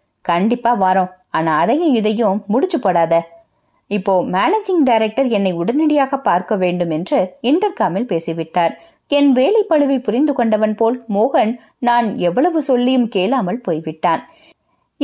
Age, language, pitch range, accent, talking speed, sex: 20-39, Tamil, 195-285 Hz, native, 110 wpm, female